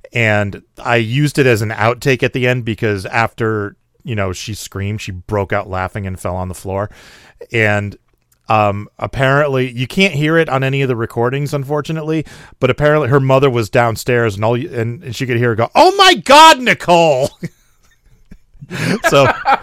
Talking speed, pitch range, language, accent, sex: 175 wpm, 100-130 Hz, English, American, male